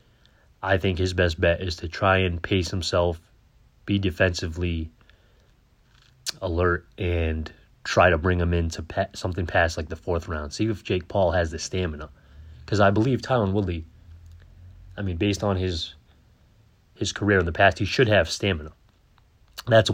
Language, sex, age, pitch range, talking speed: English, male, 30-49, 85-100 Hz, 165 wpm